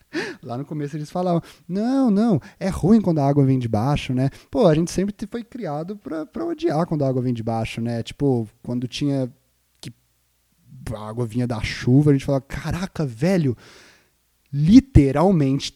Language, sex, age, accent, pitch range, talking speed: Portuguese, male, 20-39, Brazilian, 115-160 Hz, 180 wpm